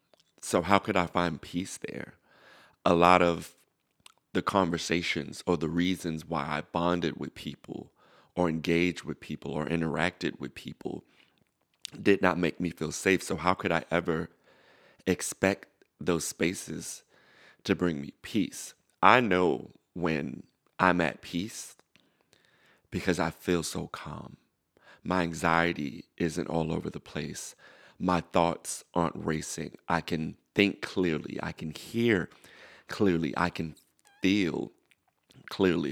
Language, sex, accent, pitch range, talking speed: English, male, American, 80-90 Hz, 135 wpm